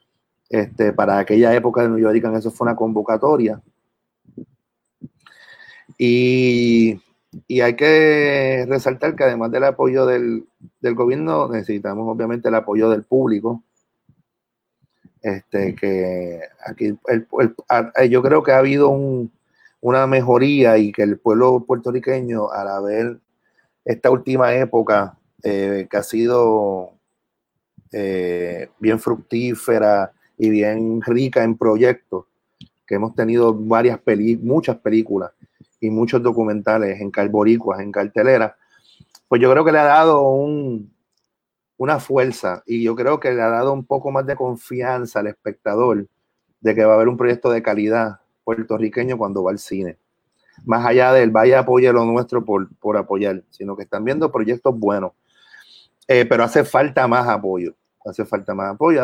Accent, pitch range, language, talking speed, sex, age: Venezuelan, 105-125 Hz, Spanish, 145 wpm, male, 30-49